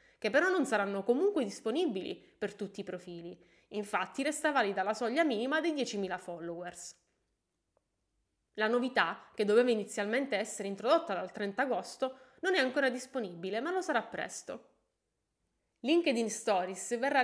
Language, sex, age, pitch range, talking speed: Italian, female, 20-39, 195-295 Hz, 140 wpm